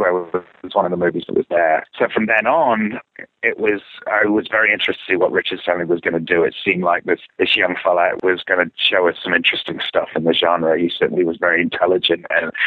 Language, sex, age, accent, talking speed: English, male, 30-49, British, 250 wpm